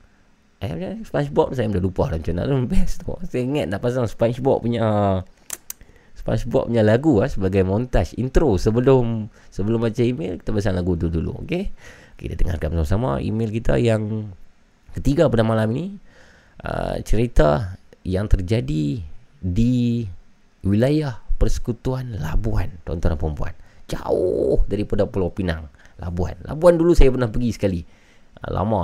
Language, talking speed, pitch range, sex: Malay, 135 wpm, 95-130 Hz, male